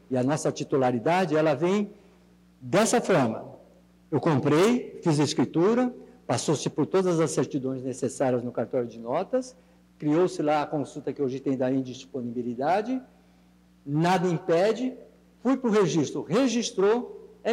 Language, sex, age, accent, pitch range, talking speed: Portuguese, male, 60-79, Brazilian, 120-190 Hz, 135 wpm